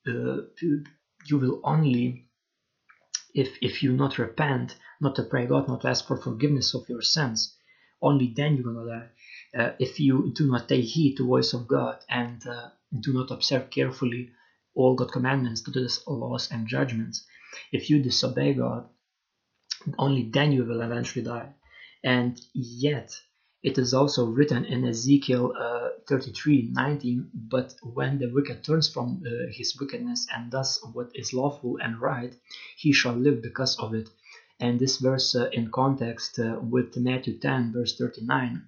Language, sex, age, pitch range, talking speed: English, male, 30-49, 120-135 Hz, 165 wpm